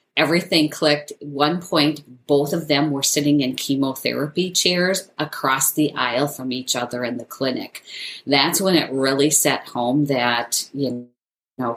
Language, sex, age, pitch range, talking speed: English, female, 40-59, 130-155 Hz, 155 wpm